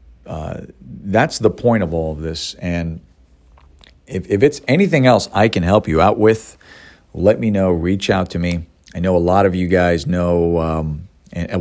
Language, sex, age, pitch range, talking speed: English, male, 40-59, 75-95 Hz, 190 wpm